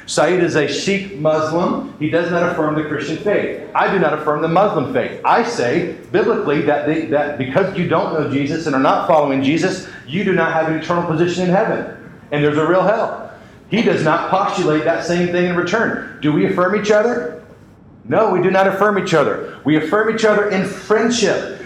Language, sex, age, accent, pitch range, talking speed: English, male, 40-59, American, 160-210 Hz, 210 wpm